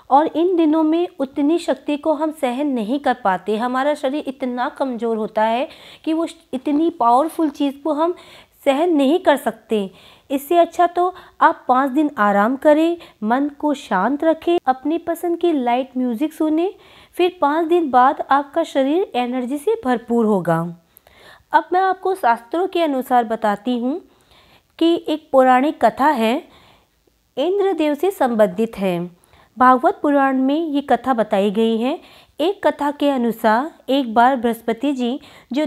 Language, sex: Hindi, female